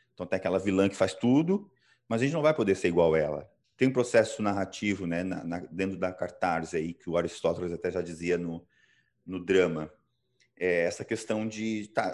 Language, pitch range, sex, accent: Portuguese, 95-125 Hz, male, Brazilian